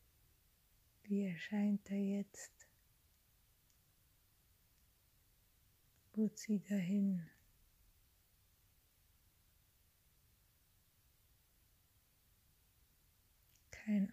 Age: 30-49